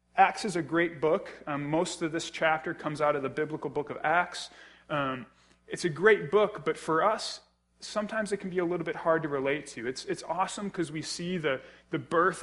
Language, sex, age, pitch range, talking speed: English, male, 20-39, 145-175 Hz, 220 wpm